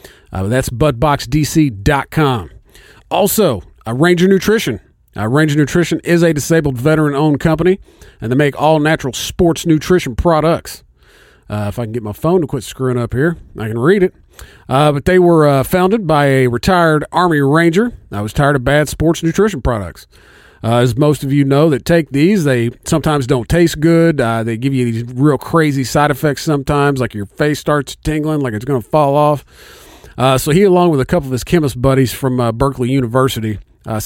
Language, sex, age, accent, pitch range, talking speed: English, male, 40-59, American, 120-155 Hz, 185 wpm